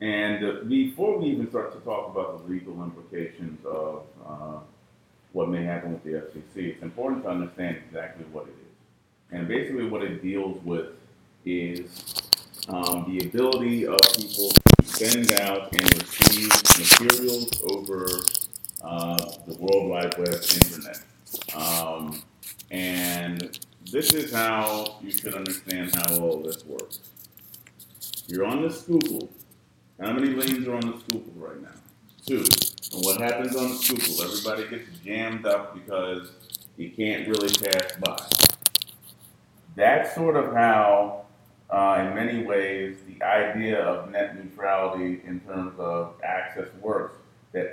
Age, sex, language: 40-59, male, English